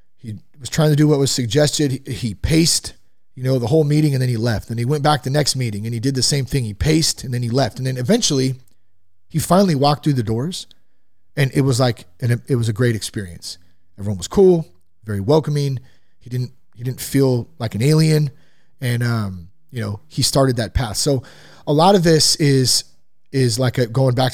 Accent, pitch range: American, 110-145 Hz